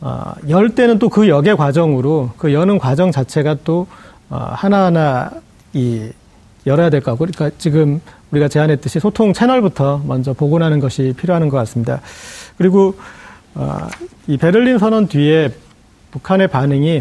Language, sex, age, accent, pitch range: Korean, male, 40-59, native, 145-200 Hz